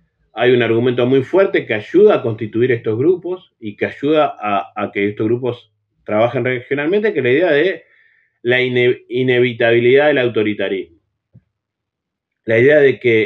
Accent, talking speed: Argentinian, 155 wpm